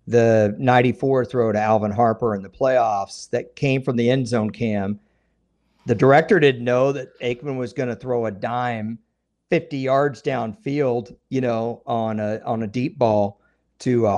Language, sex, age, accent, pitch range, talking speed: English, male, 50-69, American, 115-140 Hz, 175 wpm